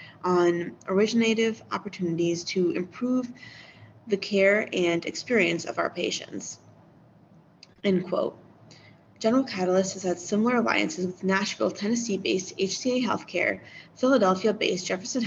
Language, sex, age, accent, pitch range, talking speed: English, female, 20-39, American, 180-220 Hz, 105 wpm